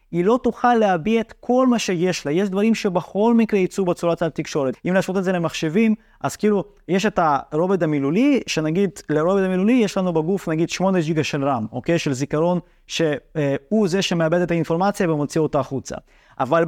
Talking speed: 180 wpm